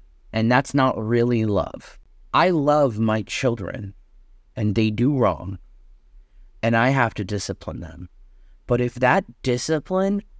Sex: male